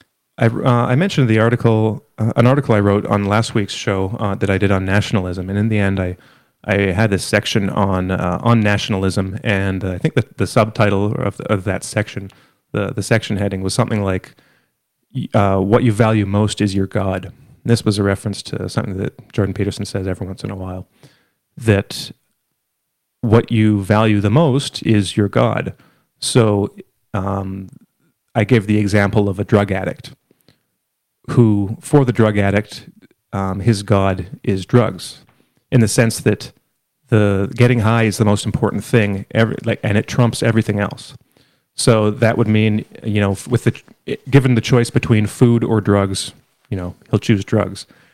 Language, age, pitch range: English, 30-49, 100-120 Hz